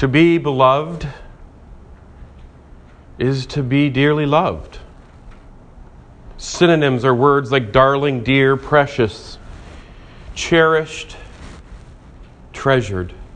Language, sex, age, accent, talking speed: English, male, 40-59, American, 75 wpm